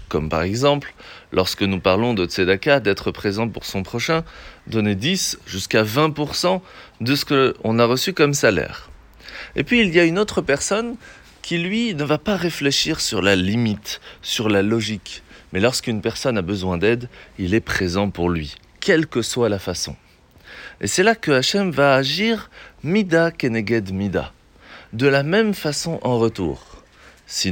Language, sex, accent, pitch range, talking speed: French, male, French, 100-160 Hz, 175 wpm